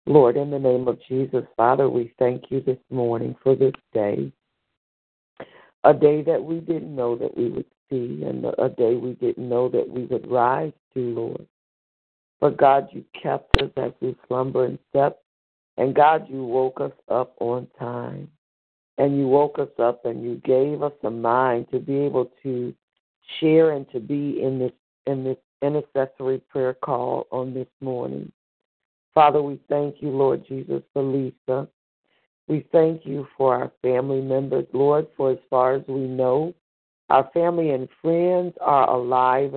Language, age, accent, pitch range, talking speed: English, 60-79, American, 125-150 Hz, 170 wpm